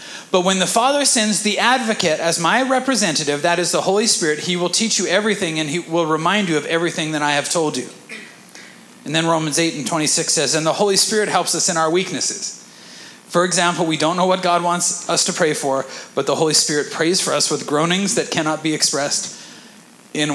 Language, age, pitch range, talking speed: English, 40-59, 170-225 Hz, 220 wpm